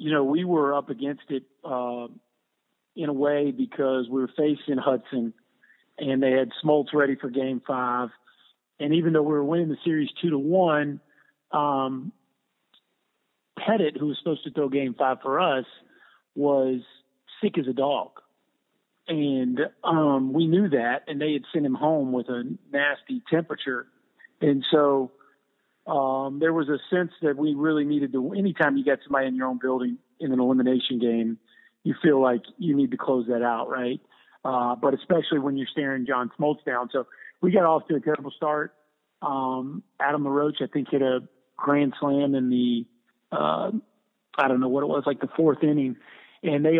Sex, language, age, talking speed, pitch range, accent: male, English, 50-69, 180 wpm, 130-150 Hz, American